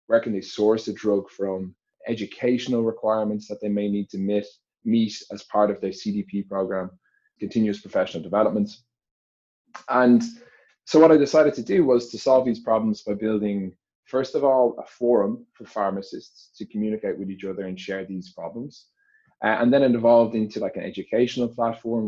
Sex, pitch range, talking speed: male, 100-120 Hz, 175 wpm